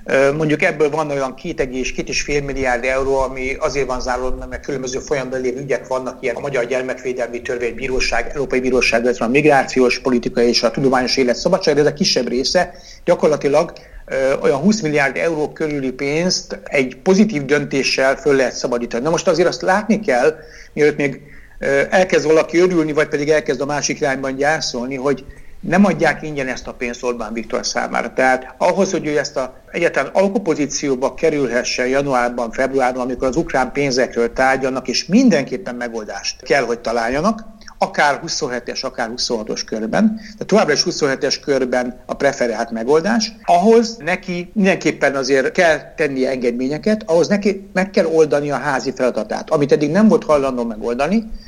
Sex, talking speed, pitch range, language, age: male, 155 wpm, 130-170 Hz, Hungarian, 60-79